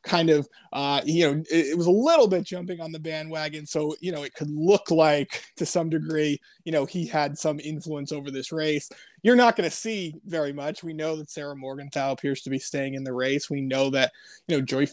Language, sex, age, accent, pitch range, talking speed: English, male, 20-39, American, 140-175 Hz, 235 wpm